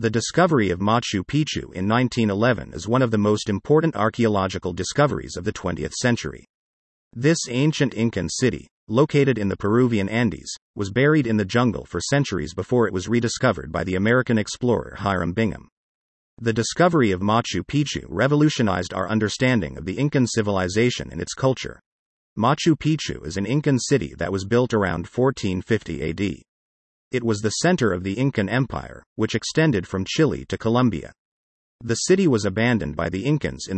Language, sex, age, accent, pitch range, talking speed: English, male, 40-59, American, 95-125 Hz, 165 wpm